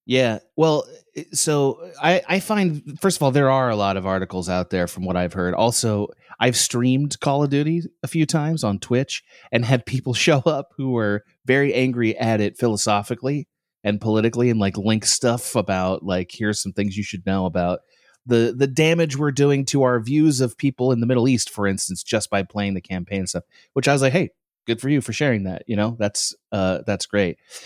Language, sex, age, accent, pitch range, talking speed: English, male, 30-49, American, 100-135 Hz, 215 wpm